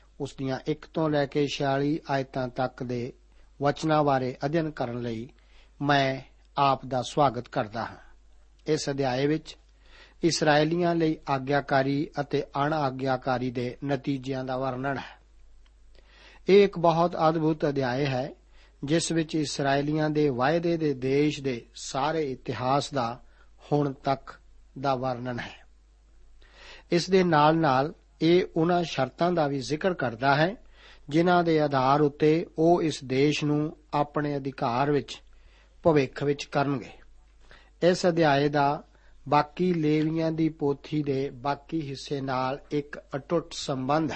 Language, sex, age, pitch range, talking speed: Punjabi, male, 60-79, 135-155 Hz, 105 wpm